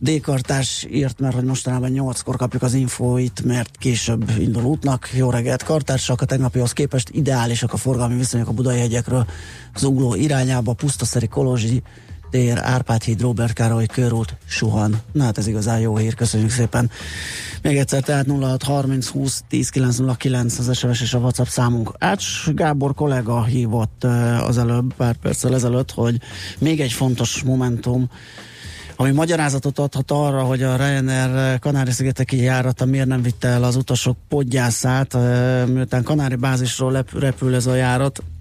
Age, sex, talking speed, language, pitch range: 30-49, male, 140 wpm, Hungarian, 120-130 Hz